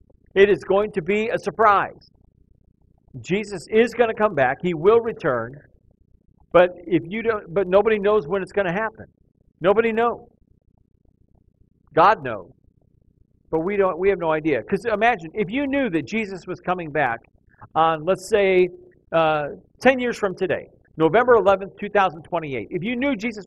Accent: American